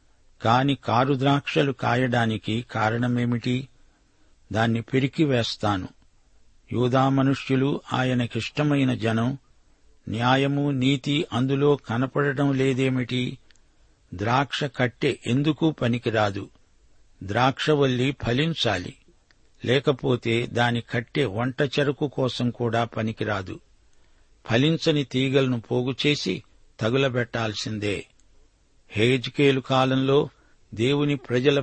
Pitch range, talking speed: 115-135 Hz, 70 wpm